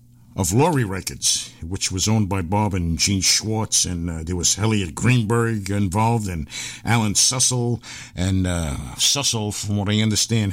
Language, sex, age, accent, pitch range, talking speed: English, male, 60-79, American, 100-120 Hz, 160 wpm